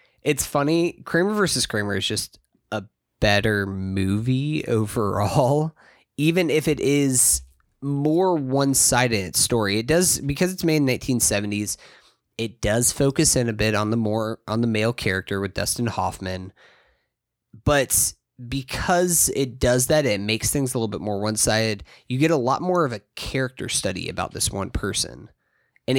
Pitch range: 105-150 Hz